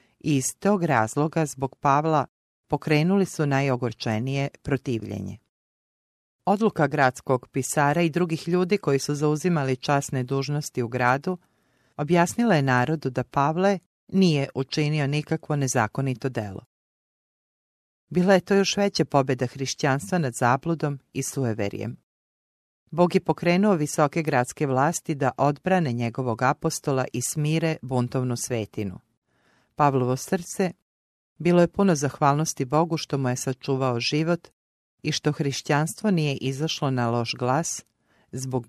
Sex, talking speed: female, 125 wpm